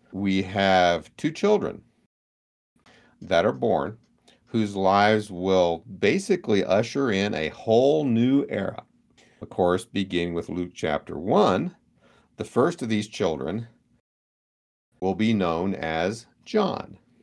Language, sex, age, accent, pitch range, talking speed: English, male, 50-69, American, 85-110 Hz, 120 wpm